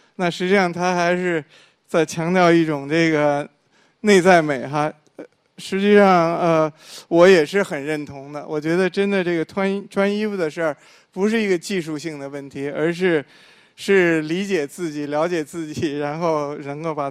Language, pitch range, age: Chinese, 150-180 Hz, 20-39